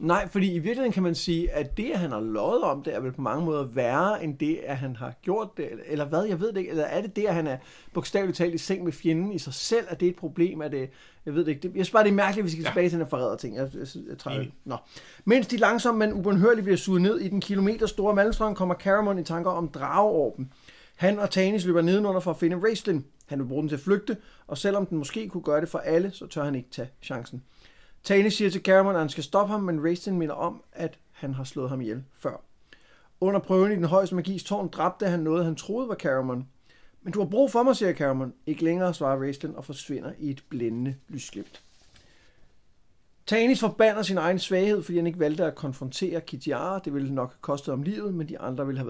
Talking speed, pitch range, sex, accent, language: 240 wpm, 145-195 Hz, male, native, Danish